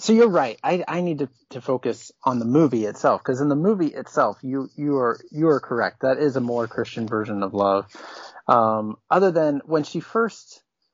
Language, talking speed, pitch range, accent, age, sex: English, 210 wpm, 110-130 Hz, American, 30-49, male